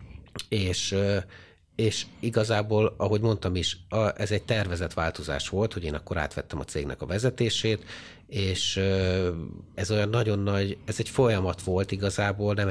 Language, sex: Hungarian, male